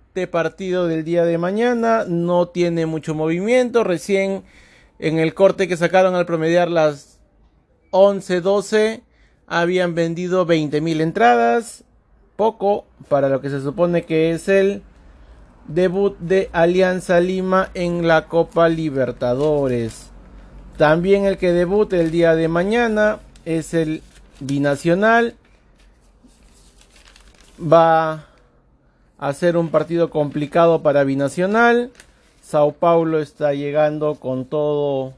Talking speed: 115 wpm